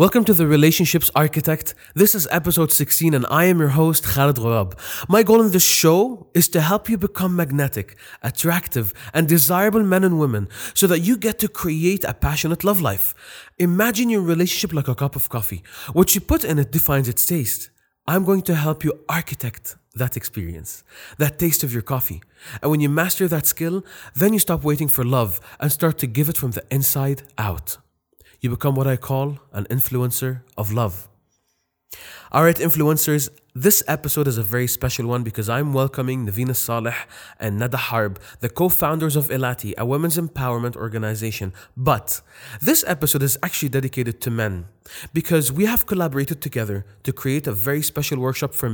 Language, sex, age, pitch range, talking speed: English, male, 30-49, 120-165 Hz, 180 wpm